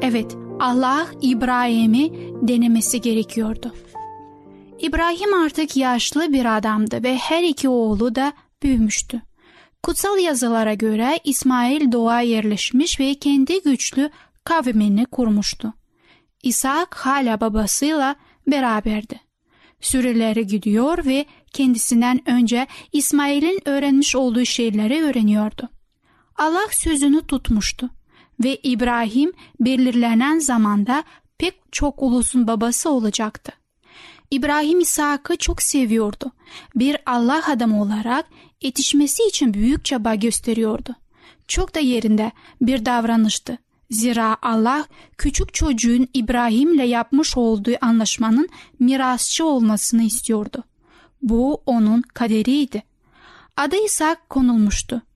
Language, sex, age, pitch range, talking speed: Turkish, female, 10-29, 230-290 Hz, 95 wpm